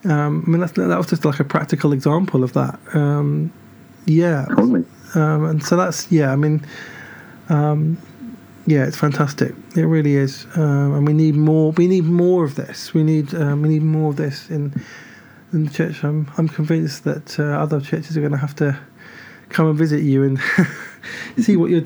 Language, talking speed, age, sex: English, 195 wpm, 20-39, male